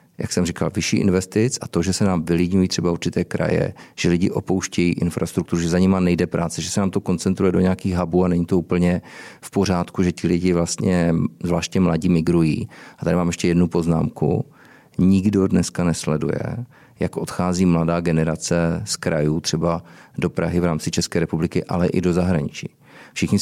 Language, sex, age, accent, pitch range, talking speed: Czech, male, 40-59, native, 85-100 Hz, 180 wpm